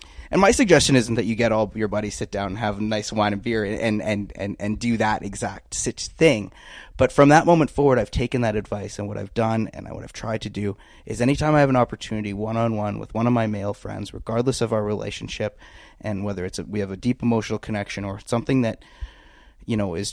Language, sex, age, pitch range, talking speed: English, male, 20-39, 100-120 Hz, 245 wpm